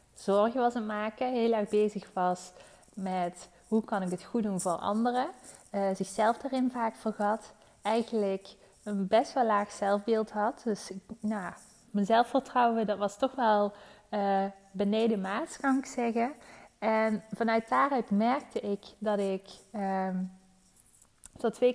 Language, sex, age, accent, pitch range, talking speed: Dutch, female, 20-39, Dutch, 195-230 Hz, 140 wpm